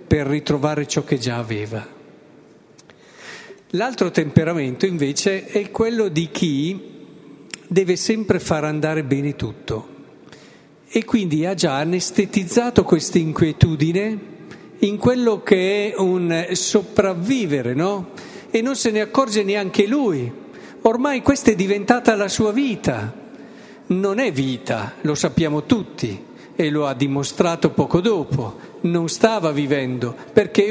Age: 50-69